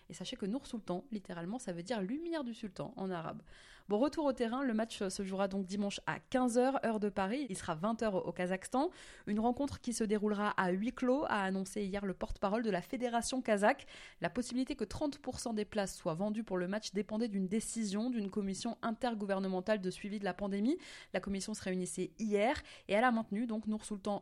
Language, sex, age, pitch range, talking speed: French, female, 20-39, 195-245 Hz, 225 wpm